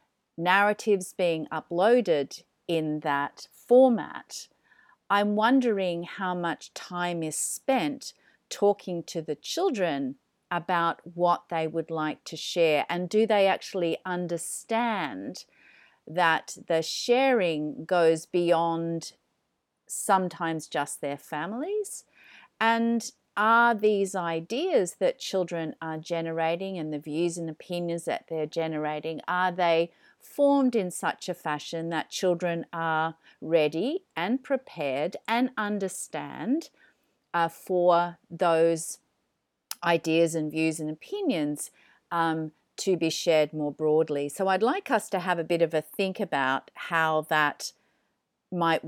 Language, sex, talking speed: English, female, 120 wpm